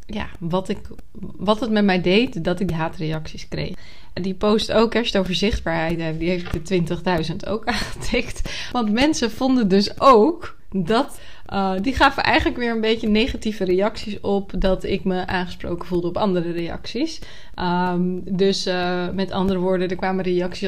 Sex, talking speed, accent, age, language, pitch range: female, 175 wpm, Dutch, 20-39, Dutch, 175-210 Hz